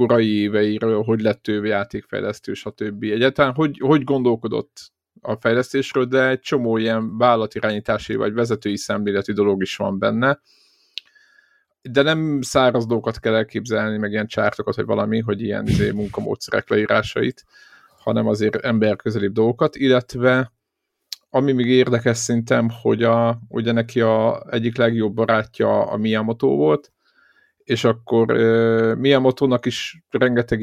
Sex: male